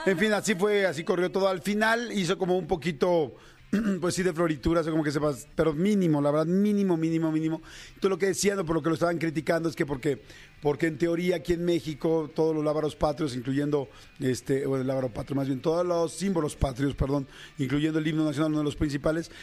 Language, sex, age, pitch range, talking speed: Spanish, male, 40-59, 145-170 Hz, 220 wpm